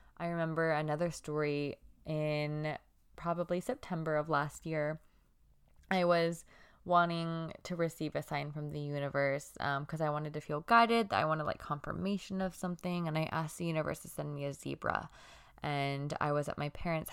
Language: English